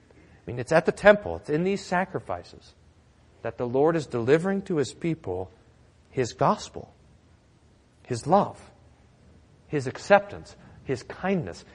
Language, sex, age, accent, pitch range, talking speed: English, male, 40-59, American, 135-210 Hz, 135 wpm